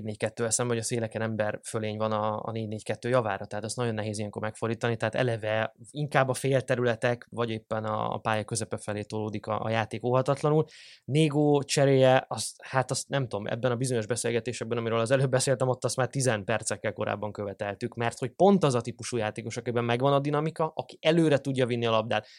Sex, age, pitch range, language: male, 20-39, 110-130 Hz, Hungarian